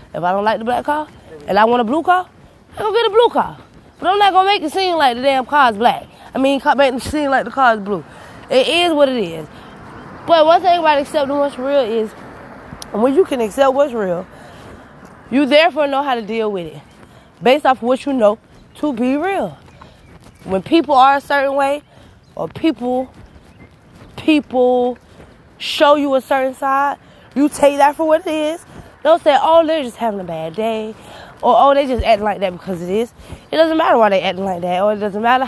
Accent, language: American, English